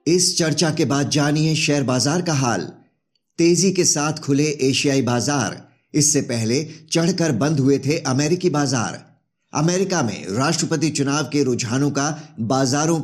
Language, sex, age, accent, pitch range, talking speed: Hindi, male, 50-69, native, 130-160 Hz, 145 wpm